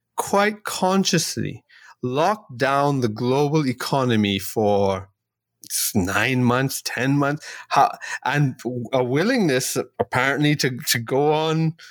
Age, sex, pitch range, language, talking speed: 30-49, male, 120-165 Hz, English, 100 wpm